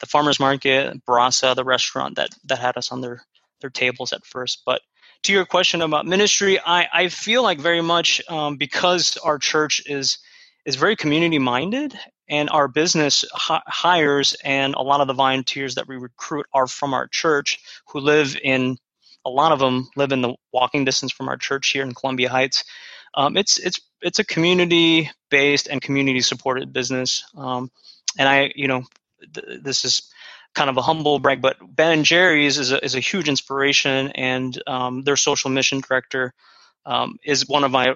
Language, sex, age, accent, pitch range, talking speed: English, male, 20-39, American, 130-155 Hz, 185 wpm